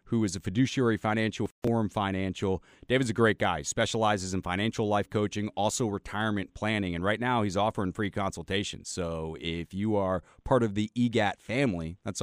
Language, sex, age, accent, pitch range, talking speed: English, male, 30-49, American, 90-115 Hz, 180 wpm